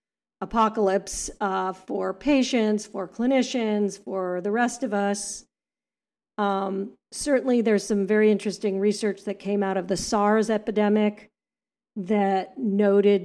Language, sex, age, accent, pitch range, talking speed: English, female, 40-59, American, 200-240 Hz, 120 wpm